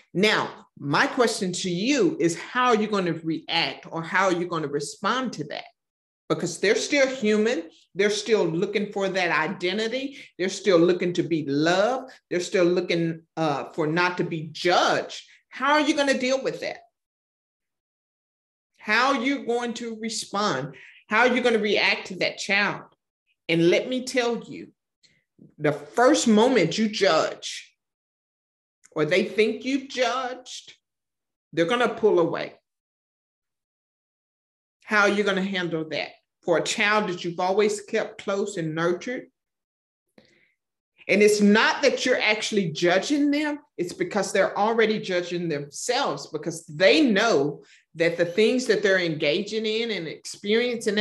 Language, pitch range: English, 170-235 Hz